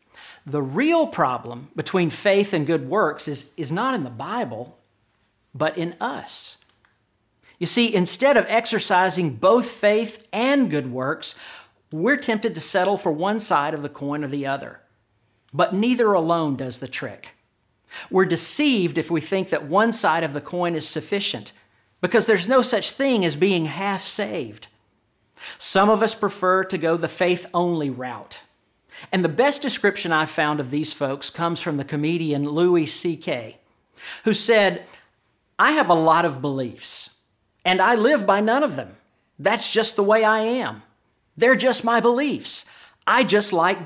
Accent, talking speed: American, 165 wpm